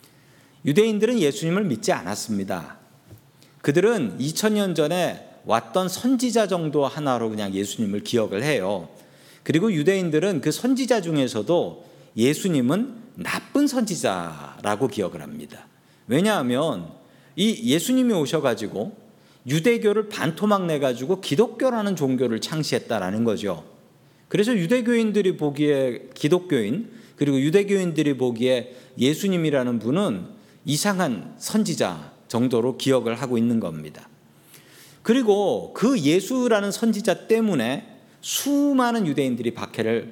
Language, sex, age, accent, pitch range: Korean, male, 40-59, native, 130-210 Hz